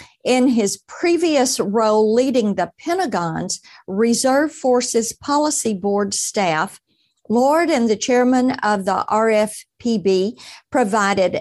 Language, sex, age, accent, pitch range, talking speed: English, female, 50-69, American, 205-265 Hz, 105 wpm